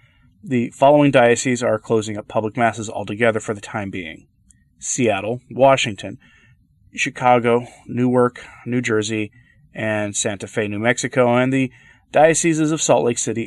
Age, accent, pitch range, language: 30-49, American, 110-135 Hz, English